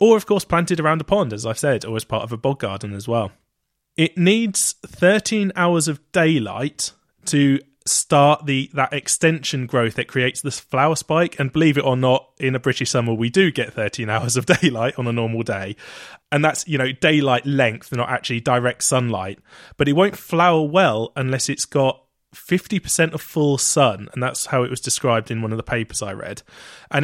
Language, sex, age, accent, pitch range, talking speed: English, male, 20-39, British, 120-155 Hz, 200 wpm